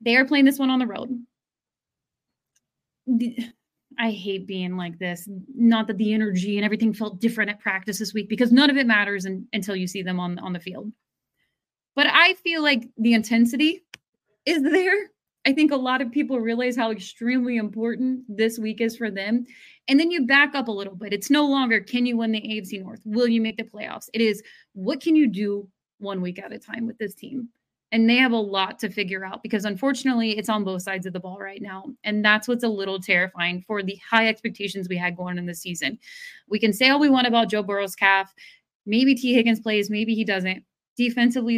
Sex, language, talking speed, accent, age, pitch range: female, English, 215 wpm, American, 30-49, 200-250 Hz